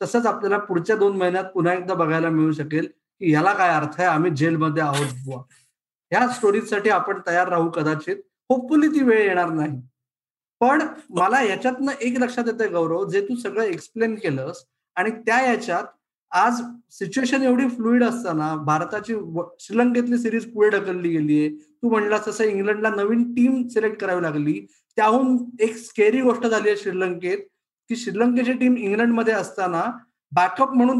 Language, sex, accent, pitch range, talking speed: Marathi, male, native, 180-245 Hz, 150 wpm